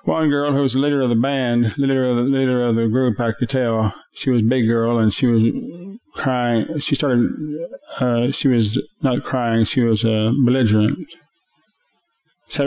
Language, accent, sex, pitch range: English, American, male, 115-140 Hz